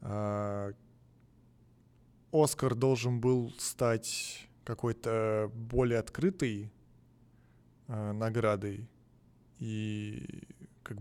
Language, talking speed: Russian, 65 wpm